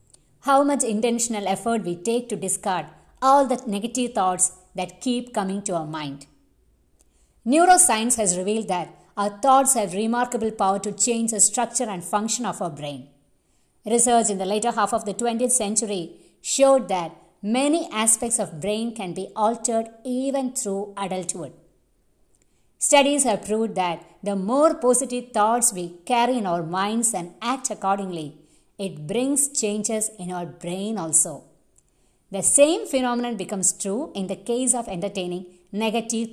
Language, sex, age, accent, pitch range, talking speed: English, female, 50-69, Indian, 185-240 Hz, 150 wpm